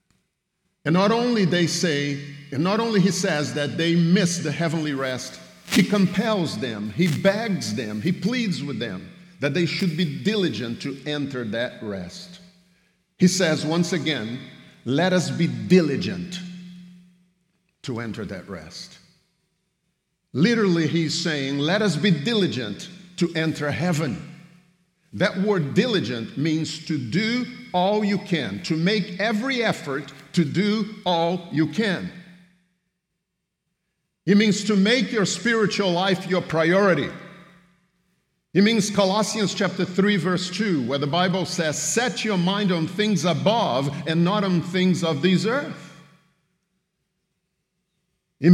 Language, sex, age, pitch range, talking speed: English, male, 50-69, 155-190 Hz, 135 wpm